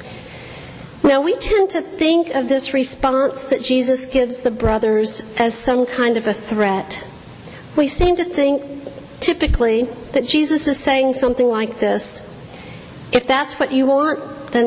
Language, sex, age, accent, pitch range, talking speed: English, female, 50-69, American, 225-270 Hz, 150 wpm